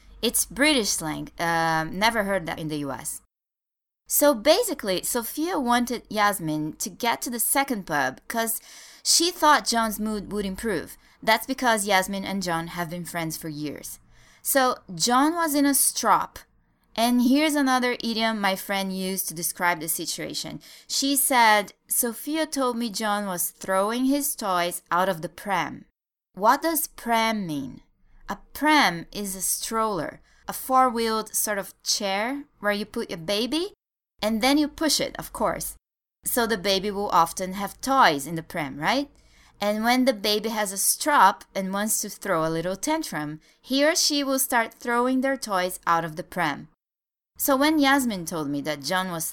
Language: English